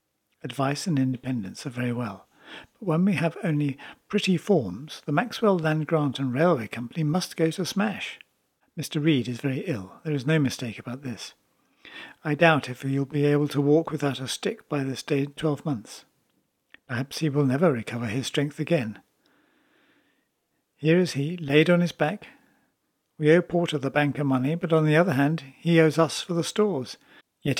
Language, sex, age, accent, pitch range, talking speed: English, male, 60-79, British, 135-165 Hz, 185 wpm